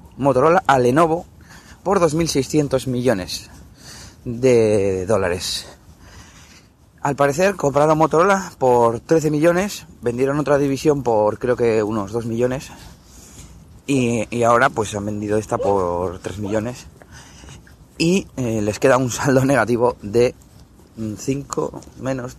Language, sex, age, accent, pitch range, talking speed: Spanish, male, 30-49, Spanish, 105-135 Hz, 120 wpm